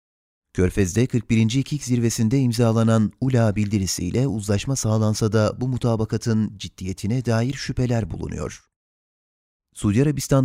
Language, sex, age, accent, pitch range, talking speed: Turkish, male, 30-49, native, 100-120 Hz, 105 wpm